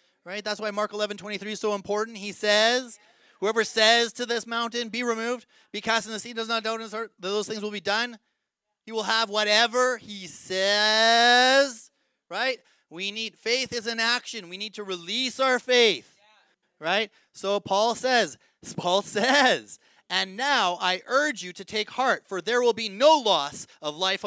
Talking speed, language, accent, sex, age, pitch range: 185 wpm, English, American, male, 30-49, 200-240 Hz